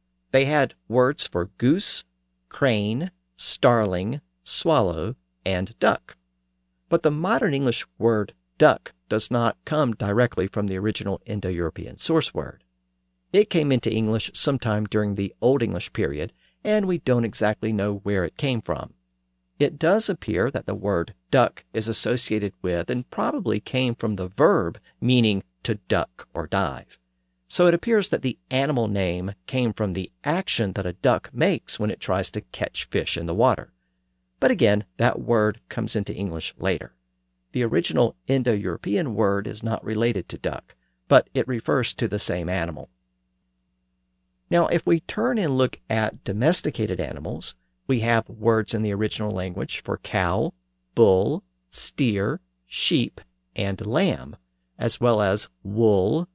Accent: American